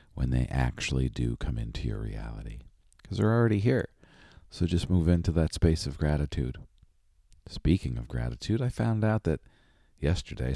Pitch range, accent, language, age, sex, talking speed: 70-90 Hz, American, English, 40-59, male, 160 wpm